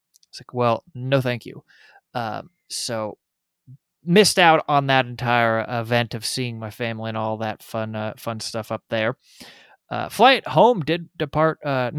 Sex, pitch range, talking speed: male, 115-155 Hz, 165 wpm